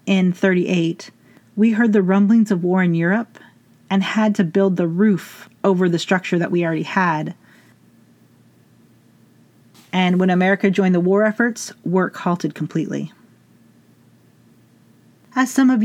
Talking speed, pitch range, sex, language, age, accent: 135 wpm, 175-220 Hz, female, English, 40-59, American